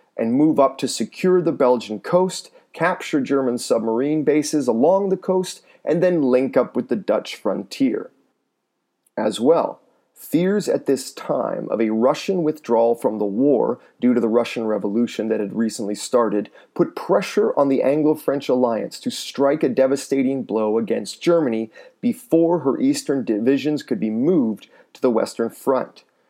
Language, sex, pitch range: English, male, 125-185 Hz